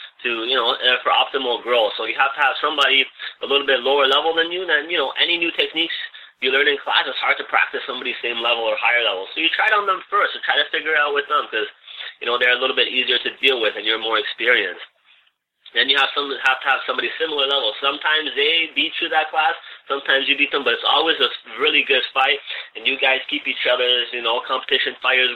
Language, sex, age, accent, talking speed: English, male, 30-49, American, 255 wpm